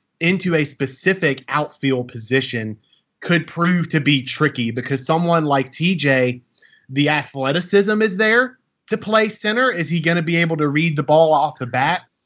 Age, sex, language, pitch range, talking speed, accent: 30-49, male, English, 130-155 Hz, 165 wpm, American